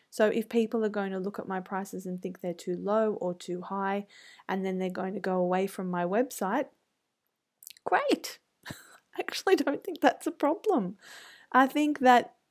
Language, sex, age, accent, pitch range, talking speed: English, female, 20-39, Australian, 180-230 Hz, 185 wpm